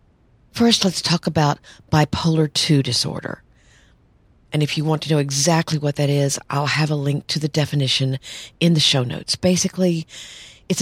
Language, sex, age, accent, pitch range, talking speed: English, female, 50-69, American, 140-170 Hz, 165 wpm